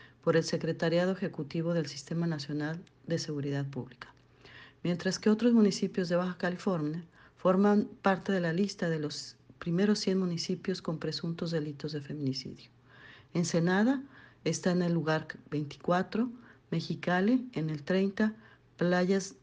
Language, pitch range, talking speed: Spanish, 155-190 Hz, 135 wpm